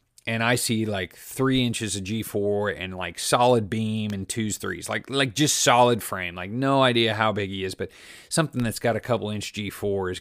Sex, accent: male, American